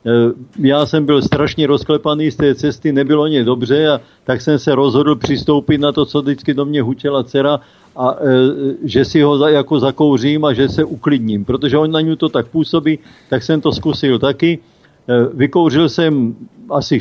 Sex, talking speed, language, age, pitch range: male, 175 wpm, Slovak, 50-69, 135-165 Hz